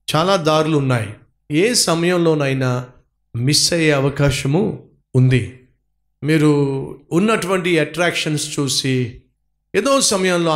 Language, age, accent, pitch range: Telugu, 50-69, native, 130-170 Hz